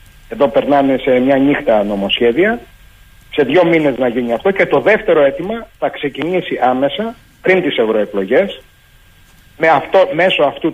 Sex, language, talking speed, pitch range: male, Greek, 145 wpm, 125-175 Hz